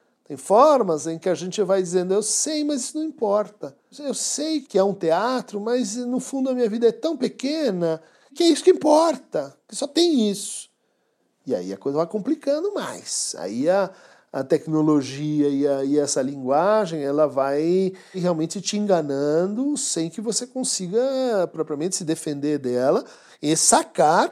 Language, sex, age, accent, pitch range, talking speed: Portuguese, male, 50-69, Brazilian, 175-280 Hz, 170 wpm